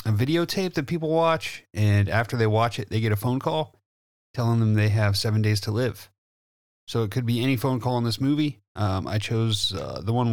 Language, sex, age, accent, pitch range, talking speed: English, male, 30-49, American, 105-125 Hz, 225 wpm